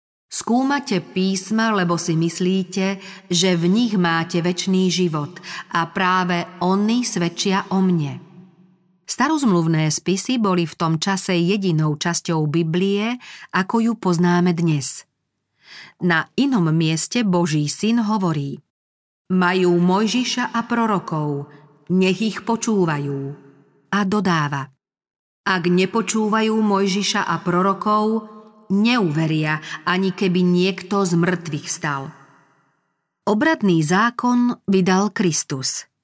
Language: Slovak